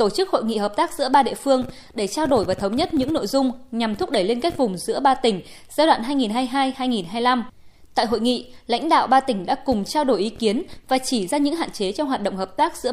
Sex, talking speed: female, 260 wpm